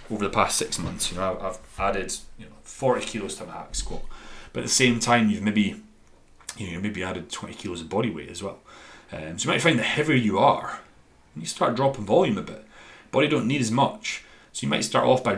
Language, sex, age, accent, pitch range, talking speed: English, male, 30-49, British, 95-115 Hz, 240 wpm